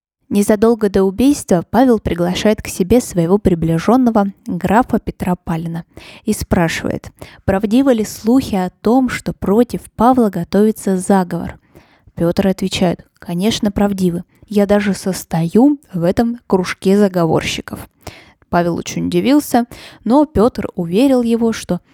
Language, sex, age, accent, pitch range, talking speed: Russian, female, 20-39, native, 180-235 Hz, 120 wpm